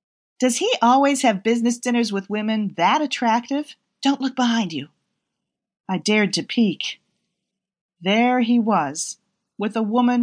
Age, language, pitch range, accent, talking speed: 40-59, English, 180-230 Hz, American, 140 wpm